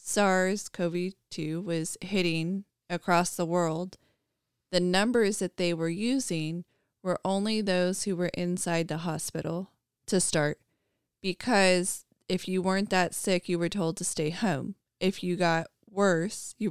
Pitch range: 165-195 Hz